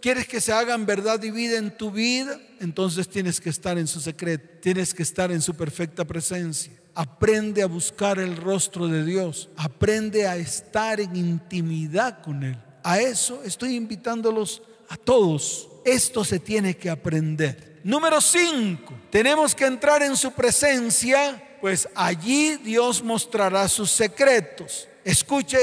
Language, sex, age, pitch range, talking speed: Spanish, male, 40-59, 185-240 Hz, 150 wpm